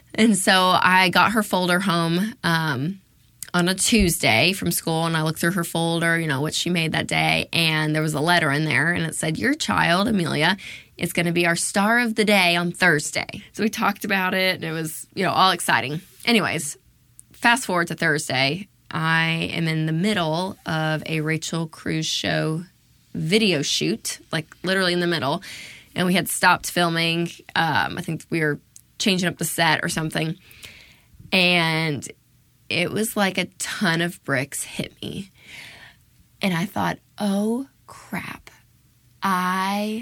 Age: 20-39